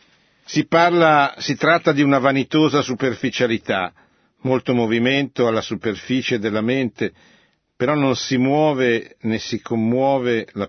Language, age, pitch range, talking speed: Italian, 50-69, 110-140 Hz, 125 wpm